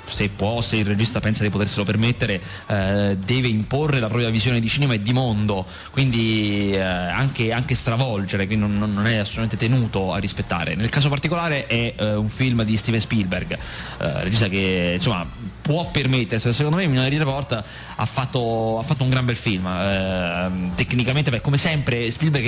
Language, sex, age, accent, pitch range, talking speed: Italian, male, 20-39, native, 105-140 Hz, 180 wpm